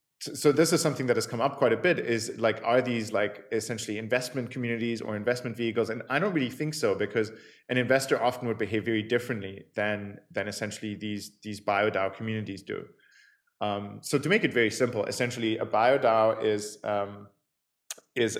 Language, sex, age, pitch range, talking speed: English, male, 20-39, 105-125 Hz, 185 wpm